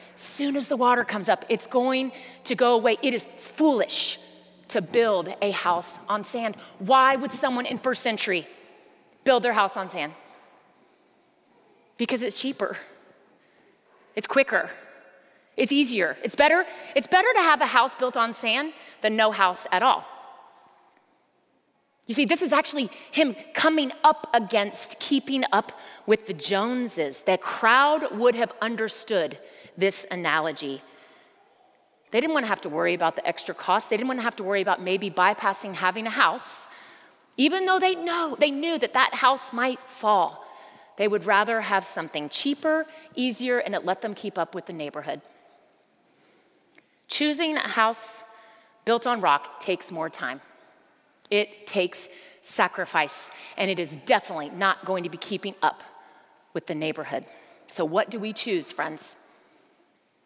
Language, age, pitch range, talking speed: English, 30-49, 195-270 Hz, 155 wpm